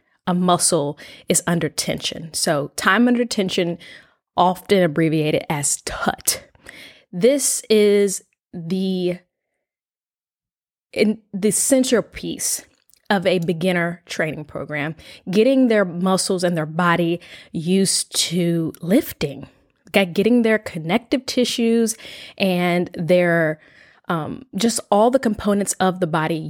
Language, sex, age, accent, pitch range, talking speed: English, female, 20-39, American, 170-210 Hz, 105 wpm